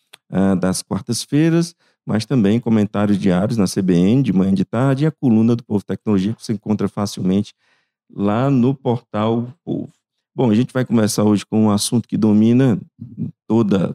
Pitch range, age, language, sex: 100-125 Hz, 50-69, English, male